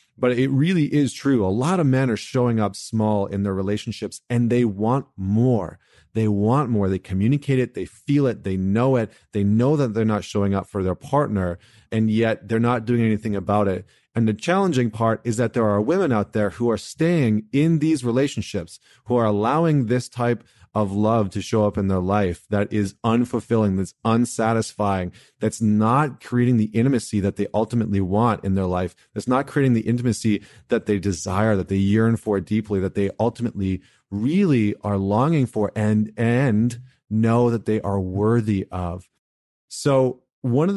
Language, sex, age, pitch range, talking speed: English, male, 30-49, 100-120 Hz, 190 wpm